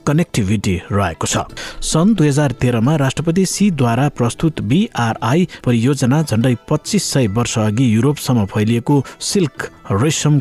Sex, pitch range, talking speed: male, 110-140 Hz, 120 wpm